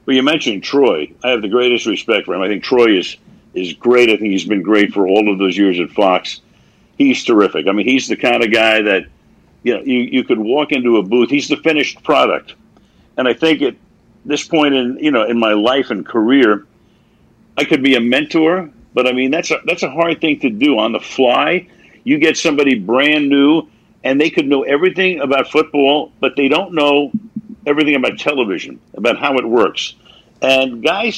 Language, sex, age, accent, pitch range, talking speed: English, male, 60-79, American, 120-165 Hz, 210 wpm